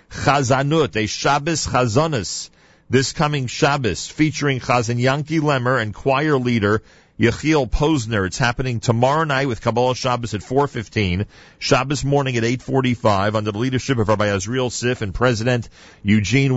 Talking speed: 140 wpm